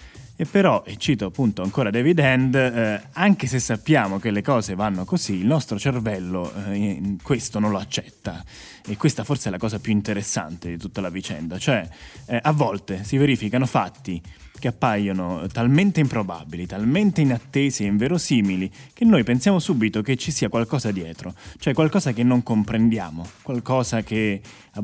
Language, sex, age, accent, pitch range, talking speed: Italian, male, 20-39, native, 95-125 Hz, 165 wpm